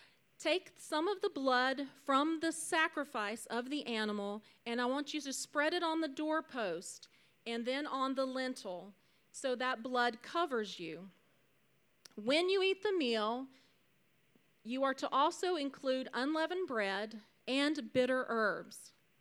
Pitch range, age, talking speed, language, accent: 235-310 Hz, 40-59, 145 wpm, English, American